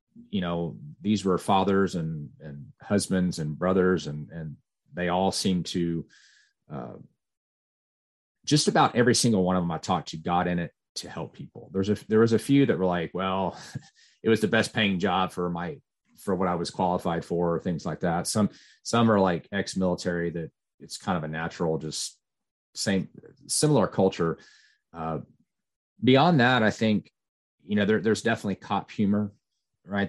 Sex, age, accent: male, 30-49, American